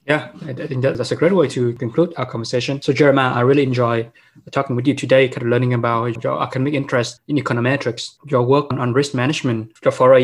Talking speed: 225 wpm